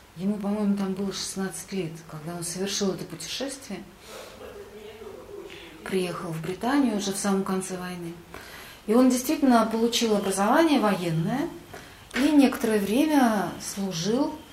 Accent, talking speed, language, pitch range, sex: native, 120 wpm, Russian, 170-235 Hz, female